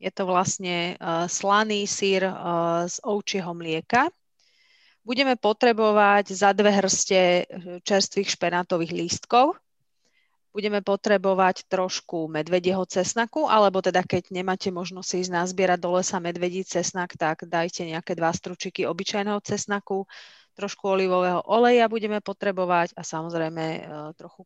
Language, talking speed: Slovak, 115 wpm